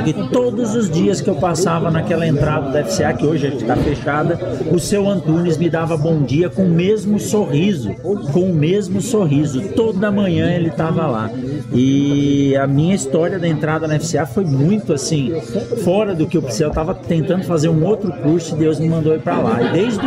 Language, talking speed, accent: Portuguese, 205 wpm, Brazilian